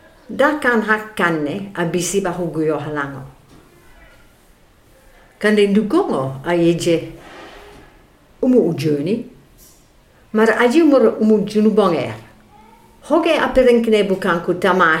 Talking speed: 90 wpm